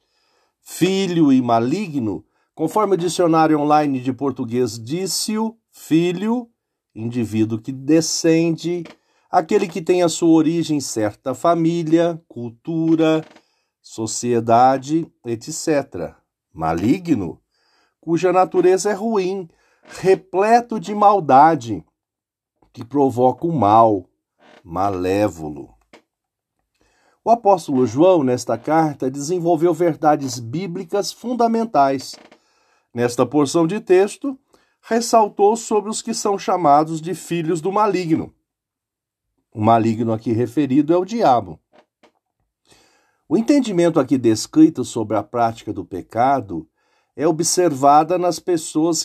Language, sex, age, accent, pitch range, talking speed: Portuguese, male, 50-69, Brazilian, 130-185 Hz, 100 wpm